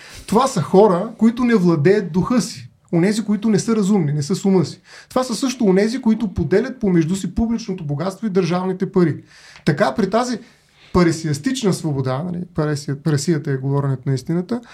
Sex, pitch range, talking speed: male, 160-215 Hz, 170 wpm